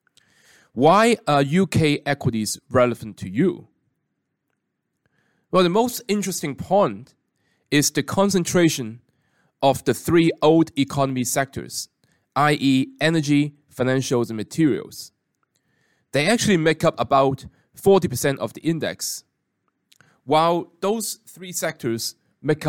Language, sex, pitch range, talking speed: English, male, 125-165 Hz, 105 wpm